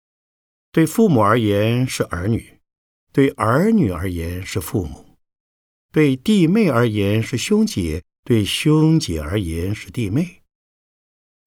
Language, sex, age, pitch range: Chinese, male, 50-69, 90-140 Hz